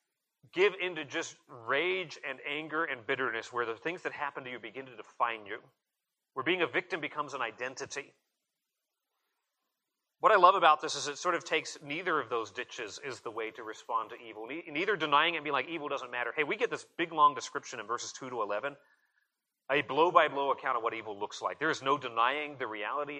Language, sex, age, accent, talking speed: English, male, 30-49, American, 215 wpm